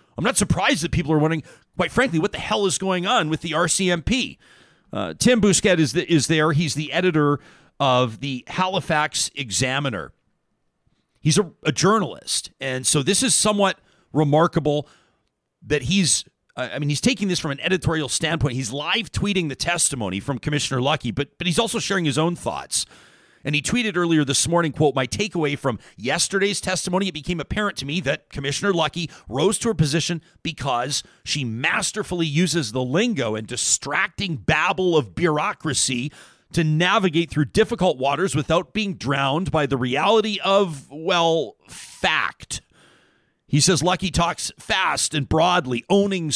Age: 40-59